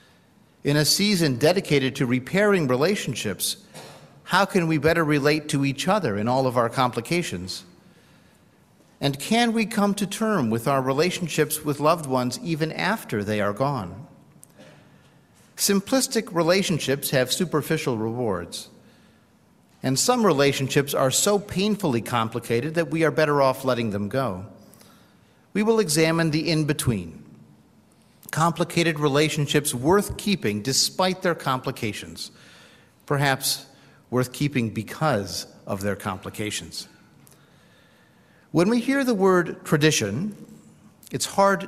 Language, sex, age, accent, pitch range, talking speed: English, male, 50-69, American, 130-185 Hz, 120 wpm